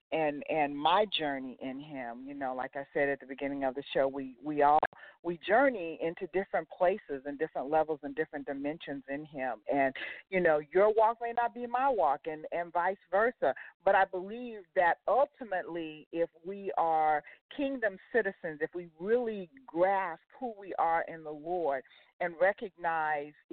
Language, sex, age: English, female, 40-59